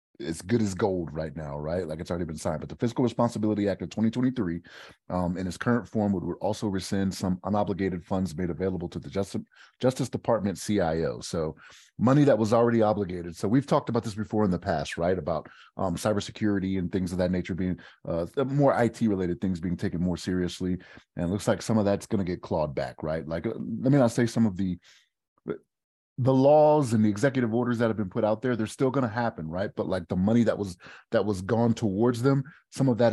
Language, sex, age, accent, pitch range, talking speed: English, male, 30-49, American, 90-120 Hz, 225 wpm